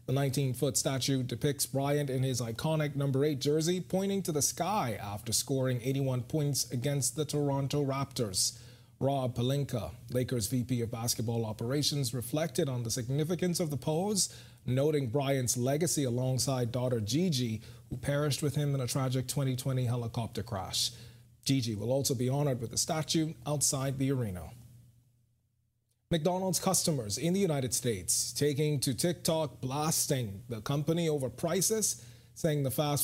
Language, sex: English, male